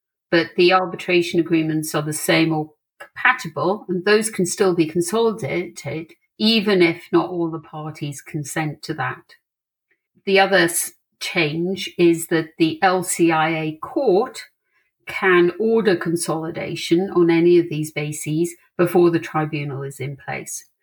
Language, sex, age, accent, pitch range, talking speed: English, female, 50-69, British, 155-180 Hz, 135 wpm